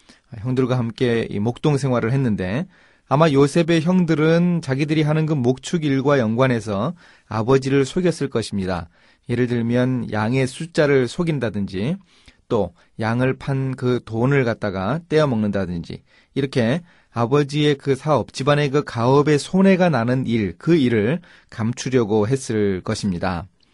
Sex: male